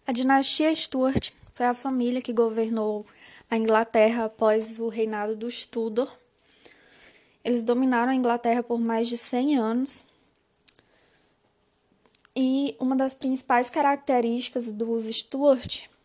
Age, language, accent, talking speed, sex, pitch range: 10-29, Portuguese, Brazilian, 115 wpm, female, 230-265 Hz